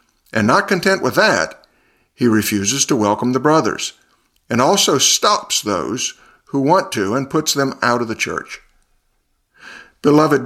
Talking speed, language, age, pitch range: 150 wpm, English, 50-69, 110-150 Hz